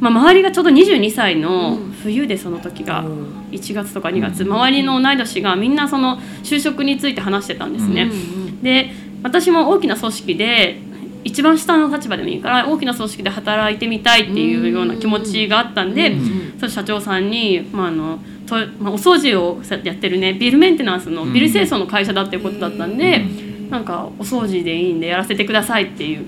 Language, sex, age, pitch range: Japanese, female, 20-39, 190-280 Hz